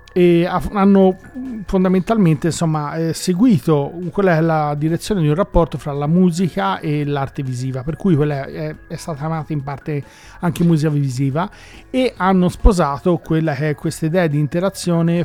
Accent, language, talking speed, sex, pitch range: native, Italian, 155 wpm, male, 145-175 Hz